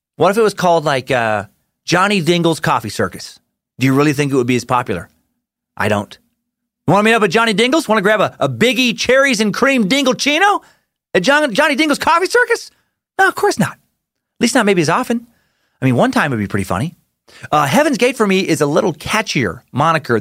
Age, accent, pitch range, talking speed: 30-49, American, 120-195 Hz, 215 wpm